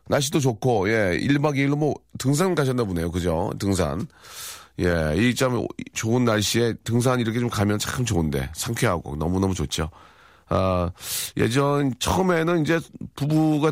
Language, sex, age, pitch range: Korean, male, 40-59, 95-135 Hz